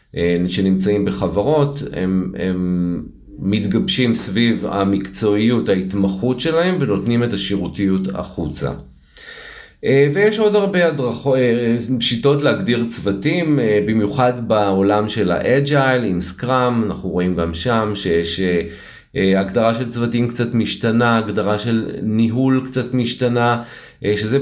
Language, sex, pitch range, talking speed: Hebrew, male, 95-125 Hz, 100 wpm